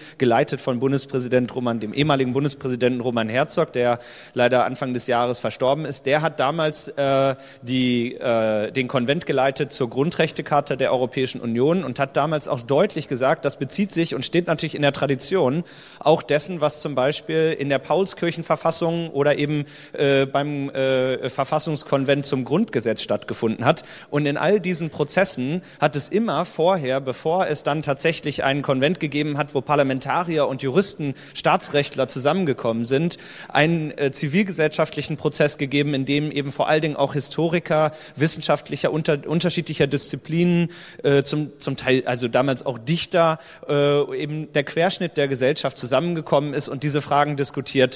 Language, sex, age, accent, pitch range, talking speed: German, male, 30-49, German, 135-160 Hz, 155 wpm